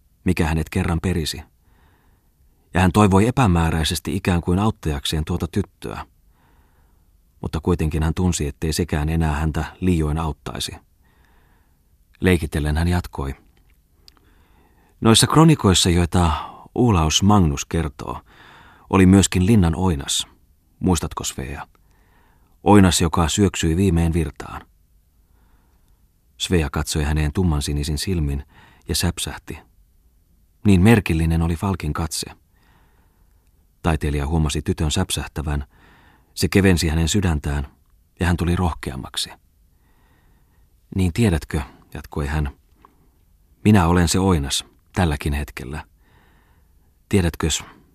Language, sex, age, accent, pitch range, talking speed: Finnish, male, 30-49, native, 75-90 Hz, 100 wpm